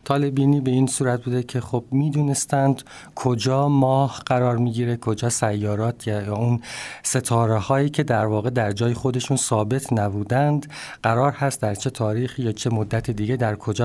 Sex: male